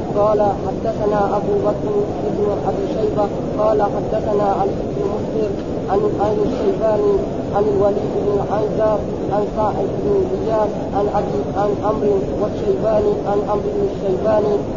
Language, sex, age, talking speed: Arabic, female, 30-49, 120 wpm